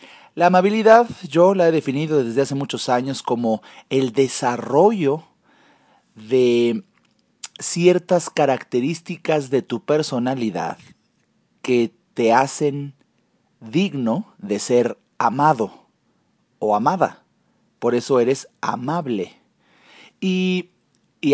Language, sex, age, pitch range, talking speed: Spanish, male, 40-59, 120-165 Hz, 95 wpm